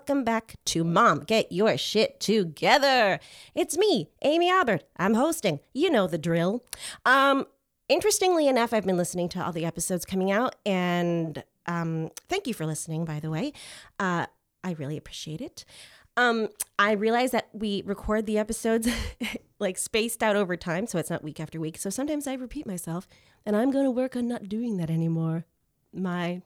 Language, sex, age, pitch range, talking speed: English, female, 30-49, 165-220 Hz, 175 wpm